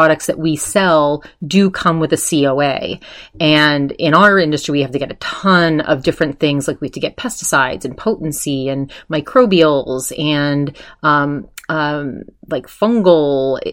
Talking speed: 160 wpm